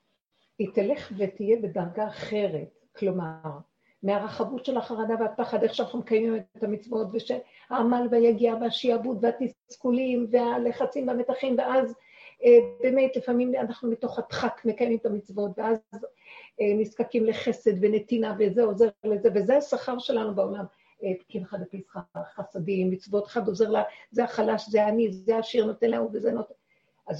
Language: Hebrew